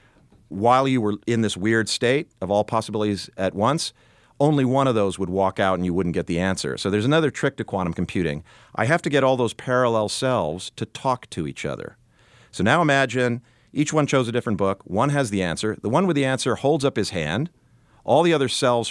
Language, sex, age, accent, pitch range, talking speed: English, male, 50-69, American, 100-130 Hz, 225 wpm